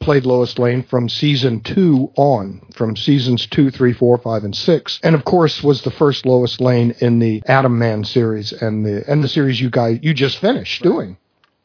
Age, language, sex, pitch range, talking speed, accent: 50-69, English, male, 125-170 Hz, 200 wpm, American